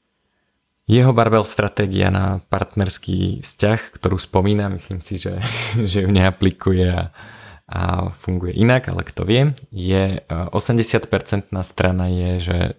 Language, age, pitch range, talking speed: Slovak, 20-39, 90-100 Hz, 125 wpm